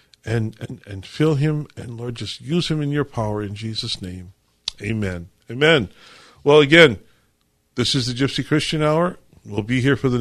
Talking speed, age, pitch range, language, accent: 180 wpm, 50-69, 110-150 Hz, English, American